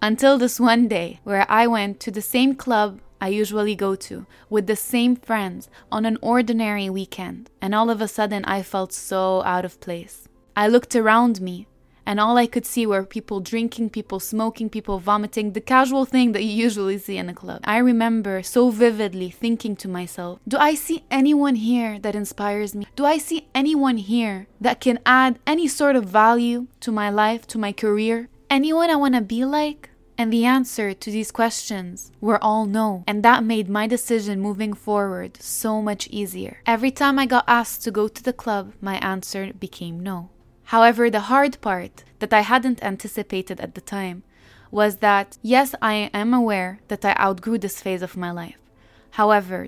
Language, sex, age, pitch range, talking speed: English, female, 20-39, 200-240 Hz, 190 wpm